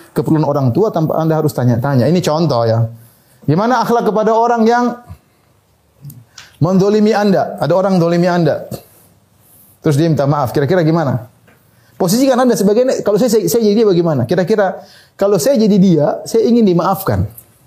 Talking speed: 155 wpm